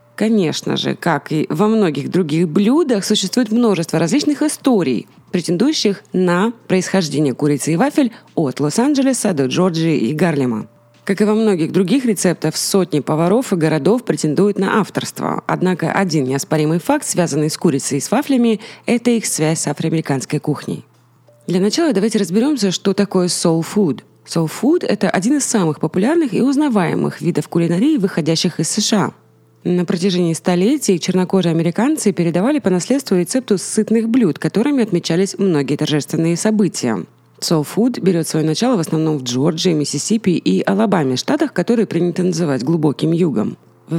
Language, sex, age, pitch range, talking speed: Russian, female, 20-39, 160-220 Hz, 145 wpm